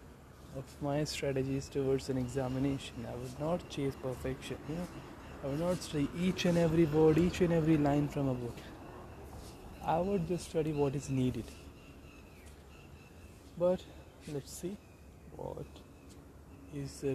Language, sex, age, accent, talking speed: Hindi, male, 20-39, native, 145 wpm